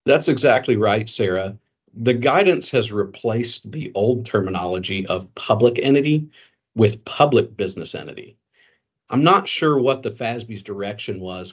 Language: English